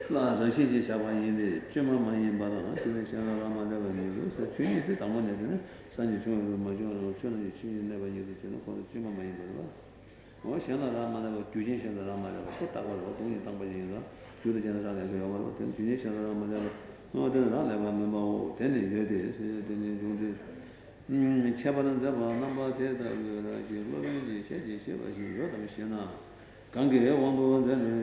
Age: 60-79